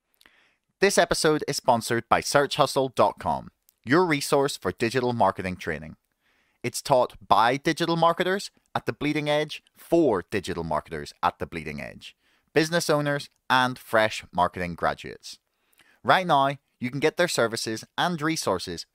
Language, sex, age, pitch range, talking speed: English, male, 30-49, 105-150 Hz, 135 wpm